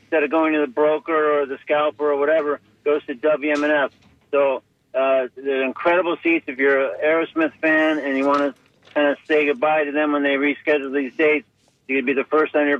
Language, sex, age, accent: English, male, 50-69, American